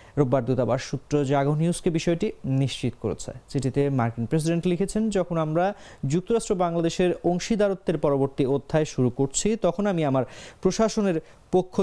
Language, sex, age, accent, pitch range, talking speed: English, male, 30-49, Indian, 130-175 Hz, 135 wpm